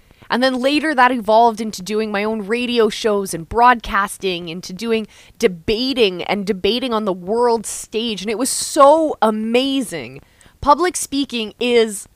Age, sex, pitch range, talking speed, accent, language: 20-39, female, 215-280 Hz, 150 wpm, American, English